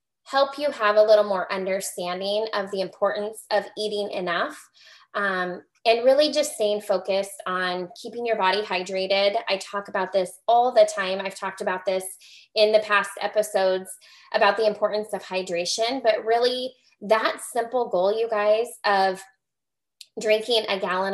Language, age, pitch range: English, 20-39, 195-240 Hz